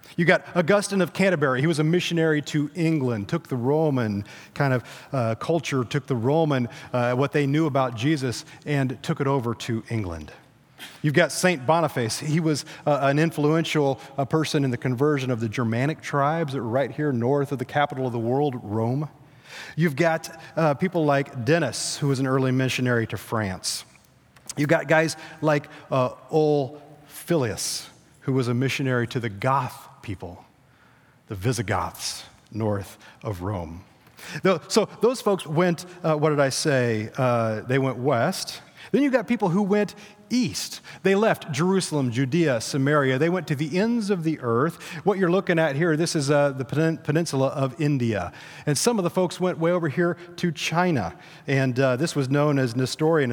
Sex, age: male, 40-59